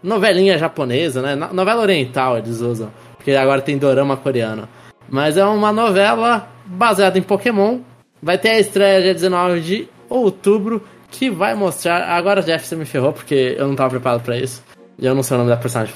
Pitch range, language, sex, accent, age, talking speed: 135-190 Hz, Portuguese, male, Brazilian, 20-39, 185 wpm